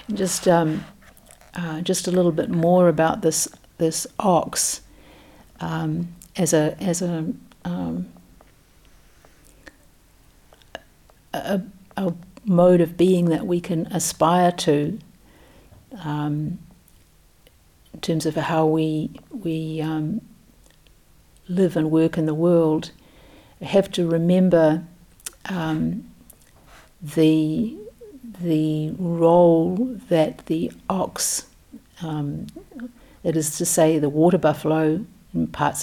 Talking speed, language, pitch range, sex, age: 105 wpm, English, 155-180 Hz, female, 60-79